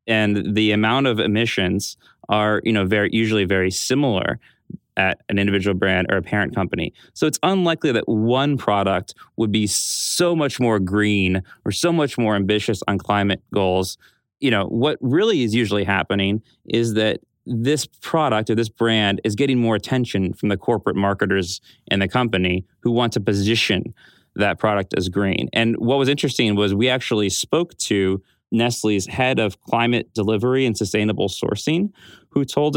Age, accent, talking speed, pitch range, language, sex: 30-49, American, 170 wpm, 100-120 Hz, English, male